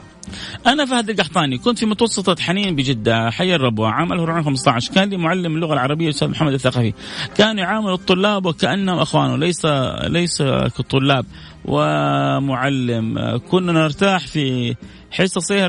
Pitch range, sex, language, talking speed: 135-175 Hz, male, Arabic, 125 wpm